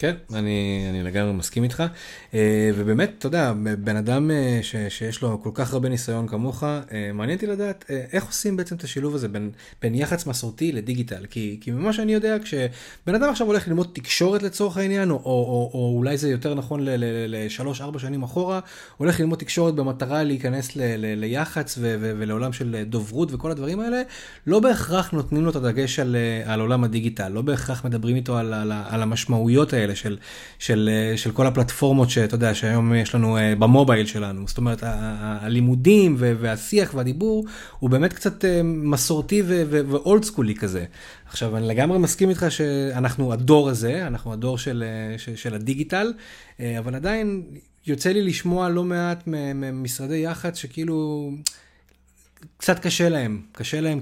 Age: 30-49